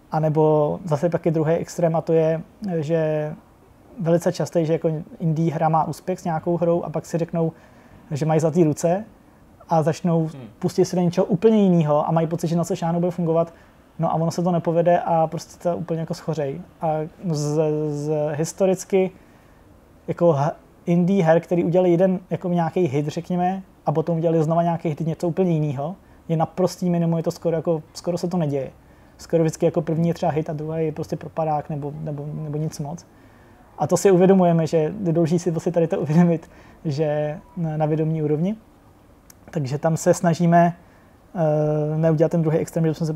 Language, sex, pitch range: Czech, male, 155-175 Hz